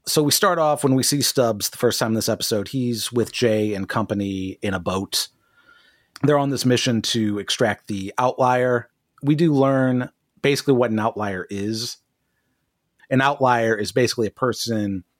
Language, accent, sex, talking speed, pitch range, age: English, American, male, 175 wpm, 95-125 Hz, 30-49